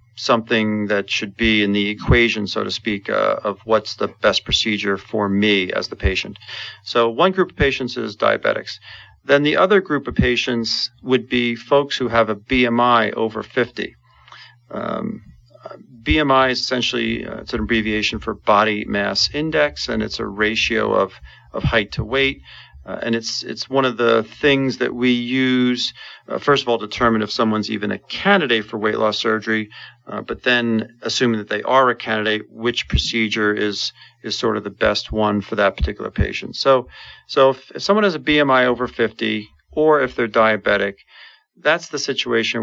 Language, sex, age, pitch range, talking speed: English, male, 40-59, 110-125 Hz, 180 wpm